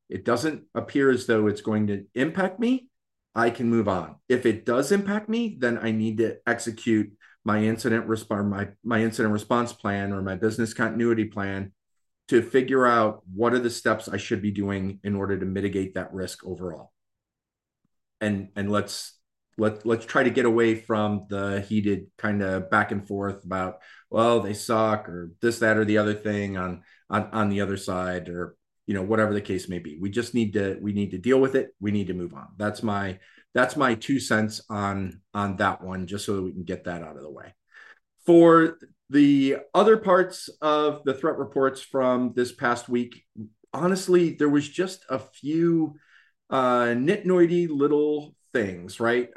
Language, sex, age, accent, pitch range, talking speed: English, male, 40-59, American, 100-125 Hz, 190 wpm